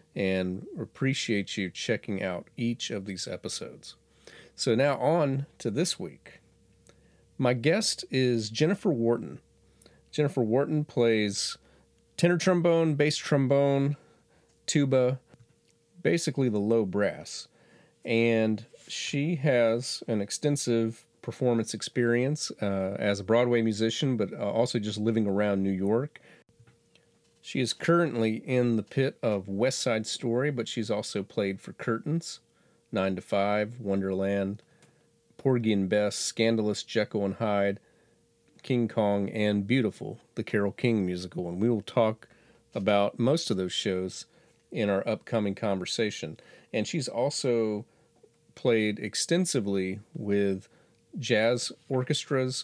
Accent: American